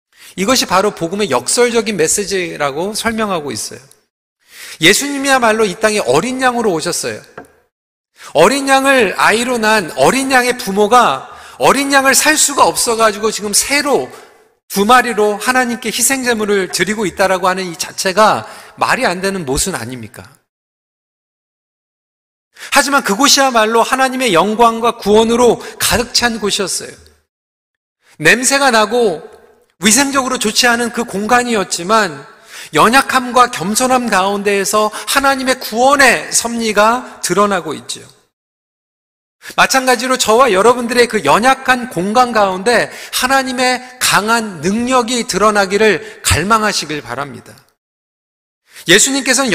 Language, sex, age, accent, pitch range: Korean, male, 40-59, native, 200-255 Hz